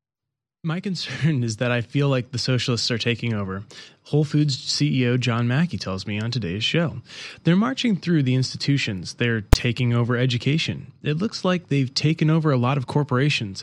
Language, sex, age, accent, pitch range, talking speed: English, male, 20-39, American, 115-145 Hz, 180 wpm